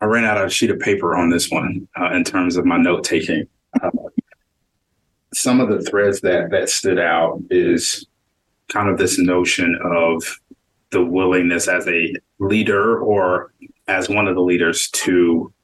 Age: 30-49